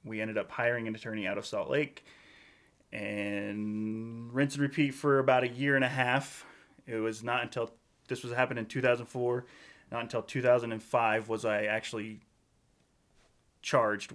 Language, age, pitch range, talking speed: English, 30-49, 110-130 Hz, 155 wpm